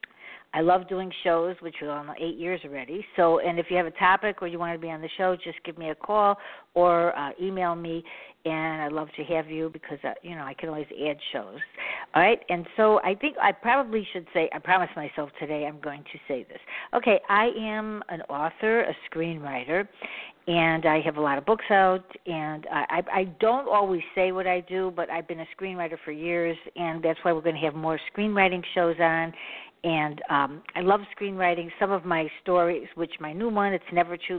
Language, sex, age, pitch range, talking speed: English, female, 60-79, 160-190 Hz, 220 wpm